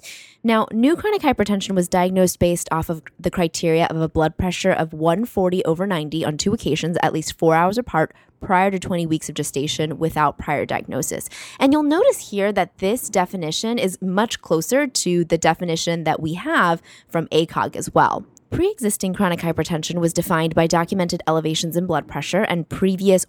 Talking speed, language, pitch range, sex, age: 180 wpm, English, 160-205 Hz, female, 20-39